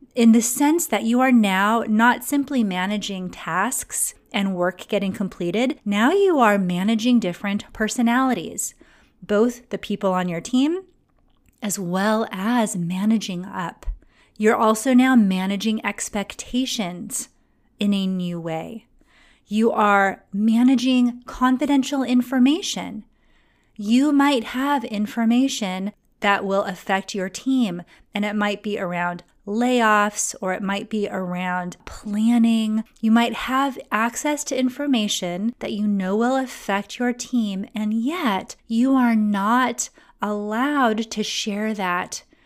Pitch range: 195-245 Hz